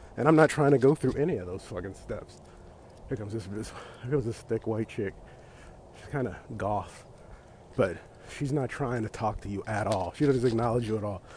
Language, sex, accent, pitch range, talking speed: English, male, American, 105-135 Hz, 215 wpm